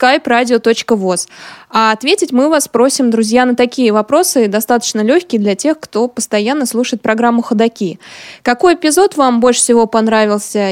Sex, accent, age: female, native, 20-39